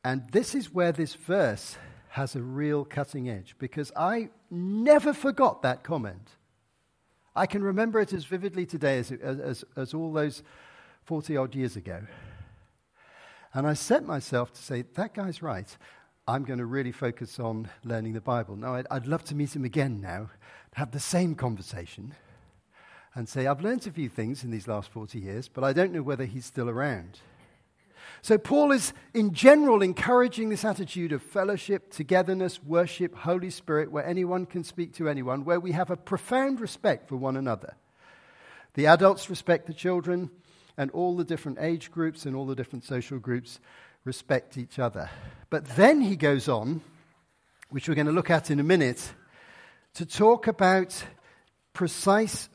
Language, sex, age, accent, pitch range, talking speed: English, male, 50-69, British, 130-180 Hz, 170 wpm